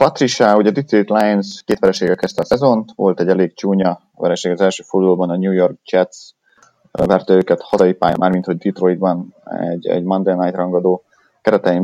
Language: Hungarian